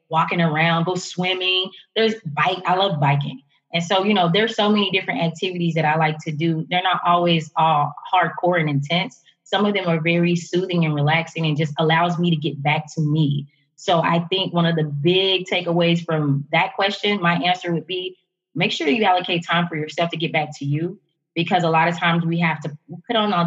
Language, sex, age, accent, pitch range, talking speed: English, female, 20-39, American, 165-205 Hz, 215 wpm